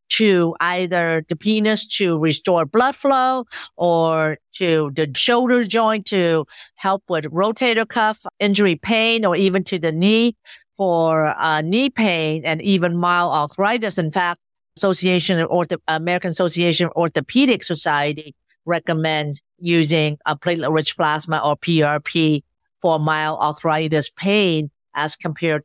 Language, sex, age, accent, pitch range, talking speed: English, female, 50-69, American, 165-215 Hz, 135 wpm